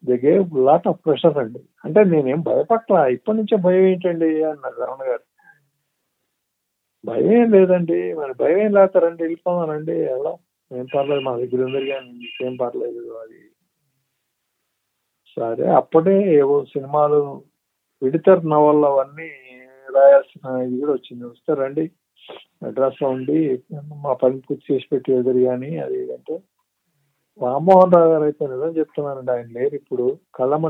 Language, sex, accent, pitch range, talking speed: Telugu, male, native, 140-185 Hz, 130 wpm